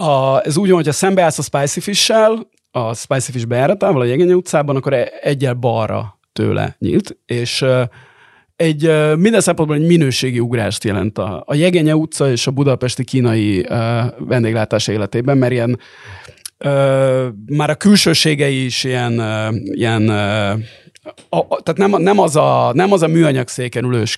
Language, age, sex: Hungarian, 30-49, male